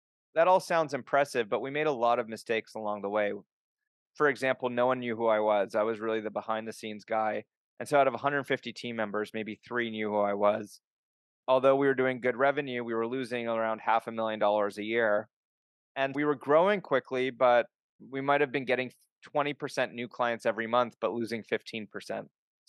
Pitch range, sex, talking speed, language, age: 110-135 Hz, male, 205 wpm, English, 30-49